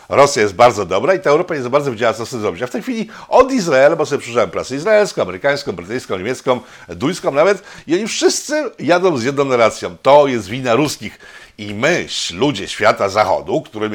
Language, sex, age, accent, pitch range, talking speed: Polish, male, 50-69, native, 110-145 Hz, 200 wpm